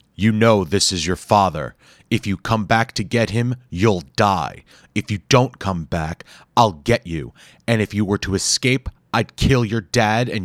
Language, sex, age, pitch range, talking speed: English, male, 30-49, 85-105 Hz, 195 wpm